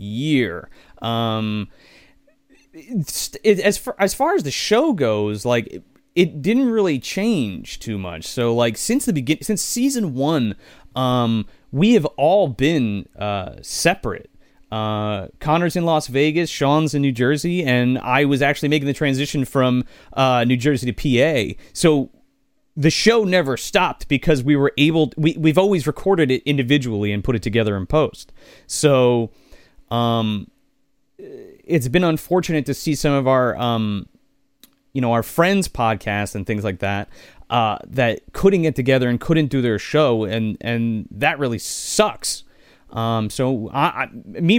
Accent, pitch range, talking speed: American, 115-155 Hz, 155 wpm